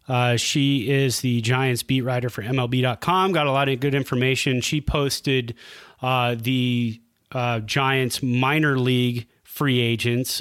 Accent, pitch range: American, 120-145 Hz